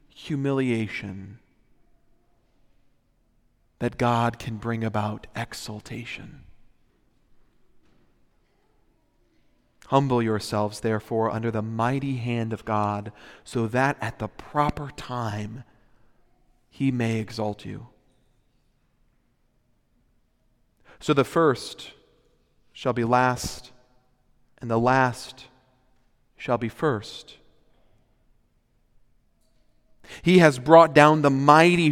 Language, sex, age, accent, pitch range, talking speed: English, male, 40-59, American, 110-140 Hz, 85 wpm